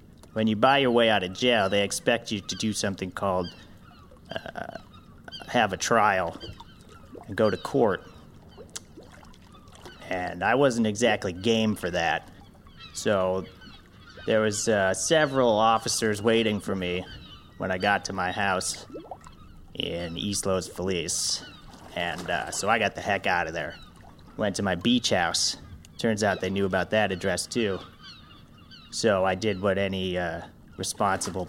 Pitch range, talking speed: 90-110 Hz, 150 wpm